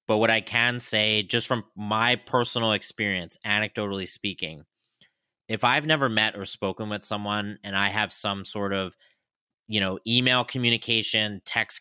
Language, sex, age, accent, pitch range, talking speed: English, male, 30-49, American, 100-120 Hz, 160 wpm